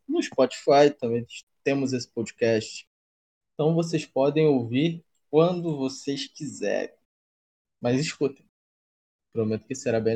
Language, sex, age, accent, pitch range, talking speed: Portuguese, male, 20-39, Brazilian, 115-150 Hz, 110 wpm